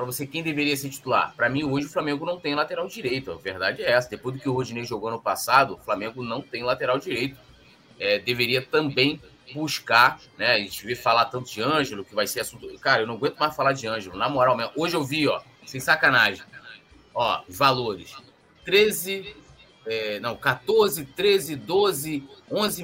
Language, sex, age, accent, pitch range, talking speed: Portuguese, male, 20-39, Brazilian, 130-175 Hz, 195 wpm